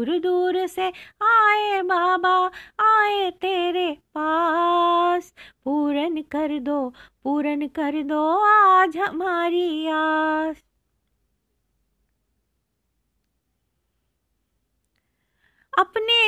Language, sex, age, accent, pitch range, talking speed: Hindi, female, 20-39, native, 310-380 Hz, 65 wpm